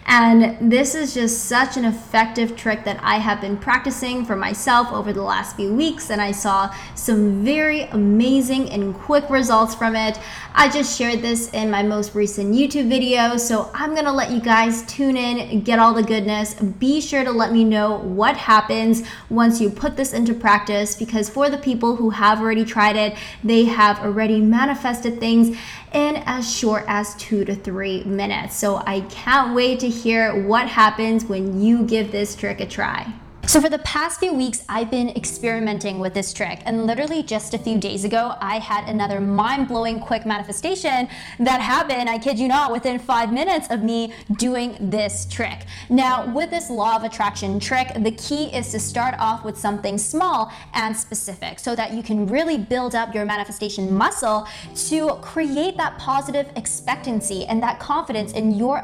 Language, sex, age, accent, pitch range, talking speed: English, female, 20-39, American, 210-255 Hz, 185 wpm